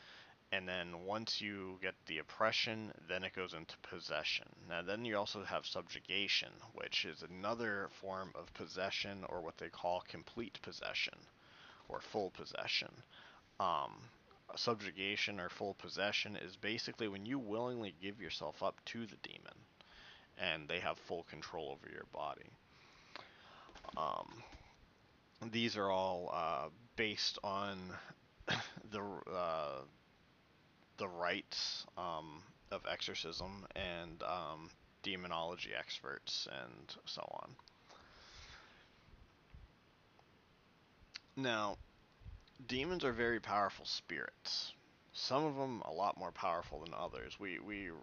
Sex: male